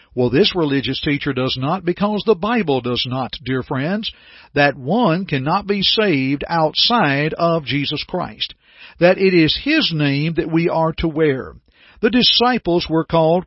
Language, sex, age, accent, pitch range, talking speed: English, male, 50-69, American, 145-195 Hz, 160 wpm